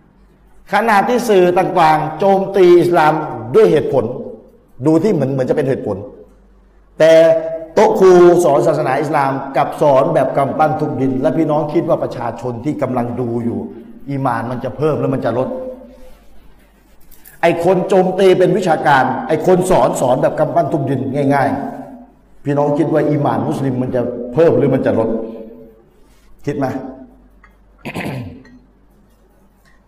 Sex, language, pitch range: male, Thai, 130-185 Hz